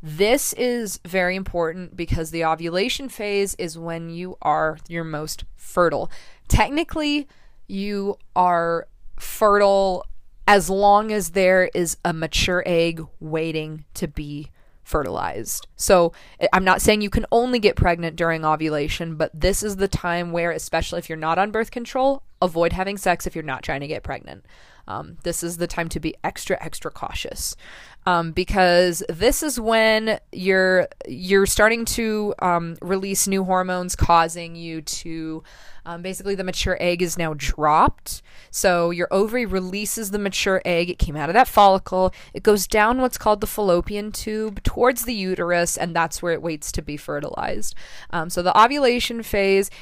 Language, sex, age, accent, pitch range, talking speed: English, female, 20-39, American, 170-210 Hz, 165 wpm